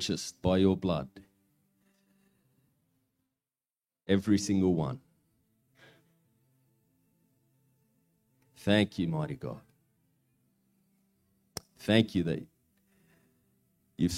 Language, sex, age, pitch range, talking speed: English, male, 30-49, 100-130 Hz, 60 wpm